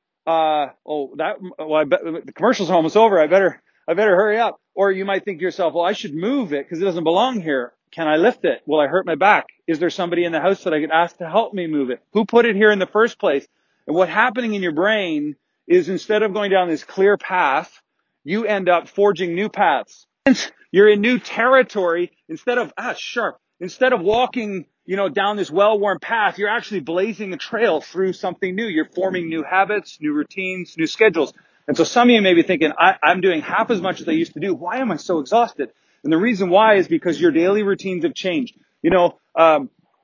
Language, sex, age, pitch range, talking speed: English, male, 40-59, 175-225 Hz, 230 wpm